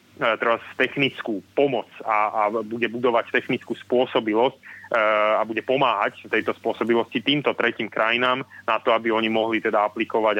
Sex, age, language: male, 30-49, Slovak